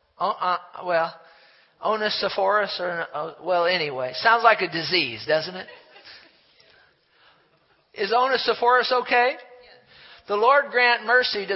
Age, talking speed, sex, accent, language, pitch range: 50-69, 125 wpm, male, American, English, 155-235 Hz